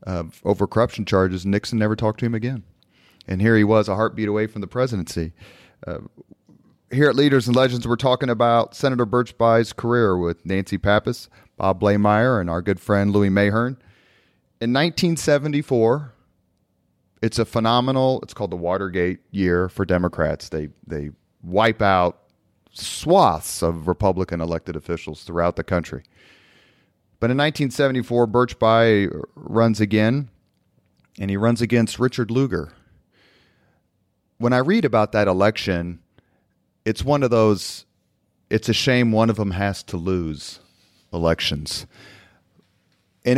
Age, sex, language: 30-49, male, English